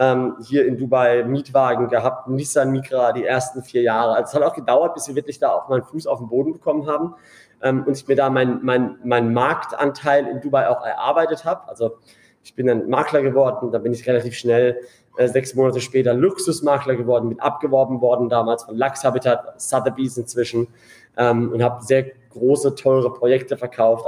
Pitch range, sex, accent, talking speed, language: 120-140 Hz, male, German, 180 wpm, German